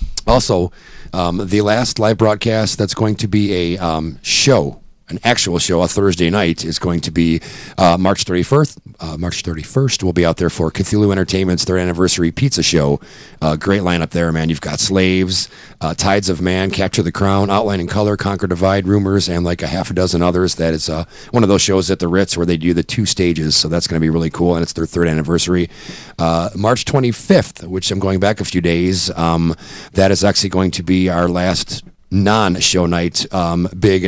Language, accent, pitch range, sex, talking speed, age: English, American, 85-100 Hz, male, 210 wpm, 40-59